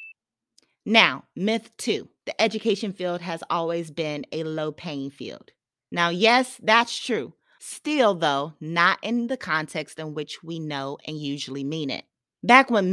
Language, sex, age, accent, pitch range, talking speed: English, female, 30-49, American, 155-210 Hz, 155 wpm